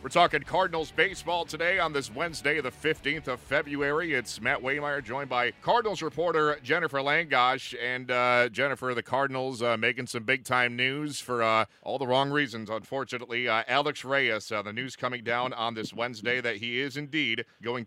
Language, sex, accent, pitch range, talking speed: English, male, American, 110-135 Hz, 180 wpm